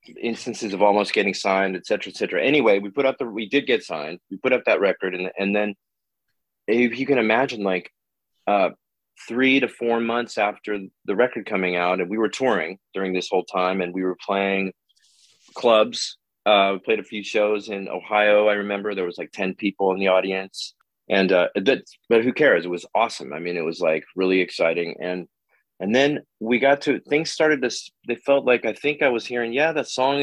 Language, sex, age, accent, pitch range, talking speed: English, male, 30-49, American, 95-120 Hz, 205 wpm